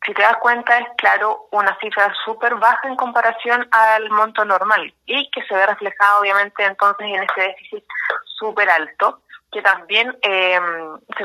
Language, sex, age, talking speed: Spanish, female, 20-39, 165 wpm